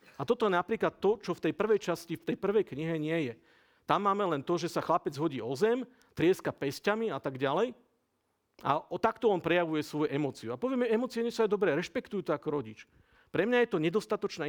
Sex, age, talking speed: male, 50-69, 220 wpm